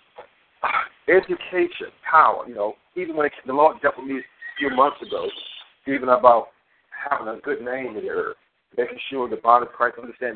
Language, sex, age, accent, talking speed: English, male, 50-69, American, 185 wpm